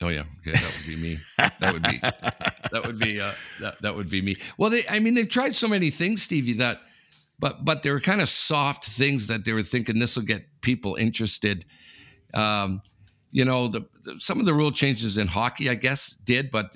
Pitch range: 95-125 Hz